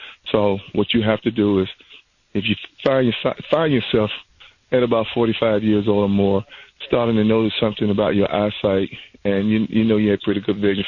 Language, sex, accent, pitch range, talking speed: English, male, American, 100-130 Hz, 200 wpm